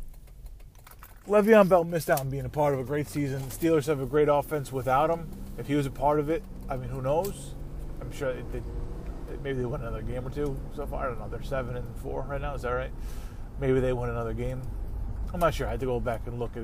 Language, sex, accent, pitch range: English, male, American, 115-155 Hz